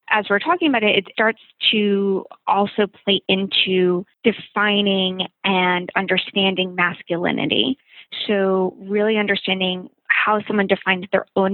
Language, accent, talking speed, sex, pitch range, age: English, American, 120 wpm, female, 185-215 Hz, 20-39